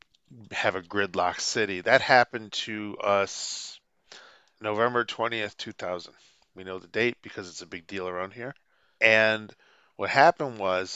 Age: 40-59